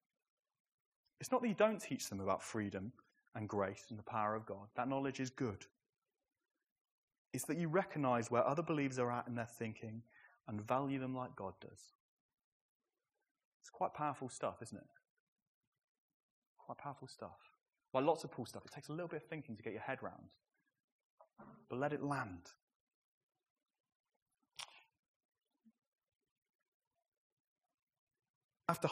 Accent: British